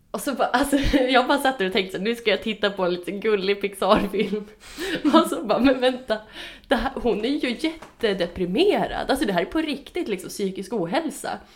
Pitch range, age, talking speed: 180-225 Hz, 20-39, 195 wpm